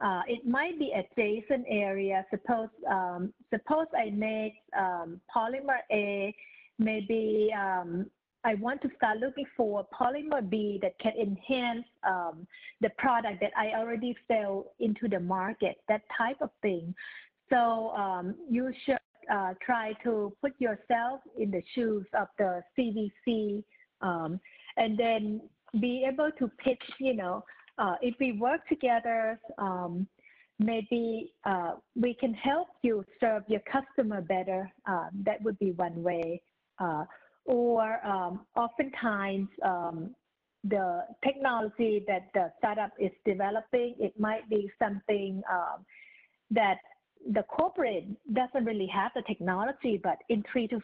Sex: female